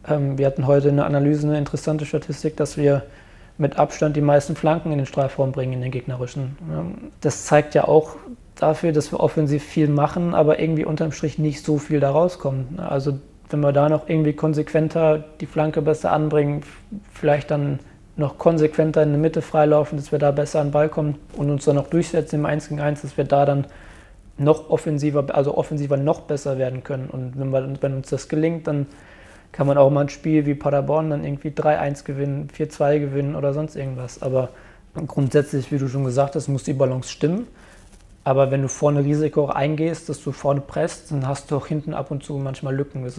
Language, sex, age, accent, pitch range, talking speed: German, male, 20-39, German, 140-155 Hz, 205 wpm